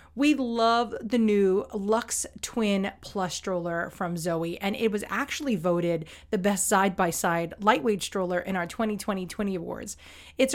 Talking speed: 140 wpm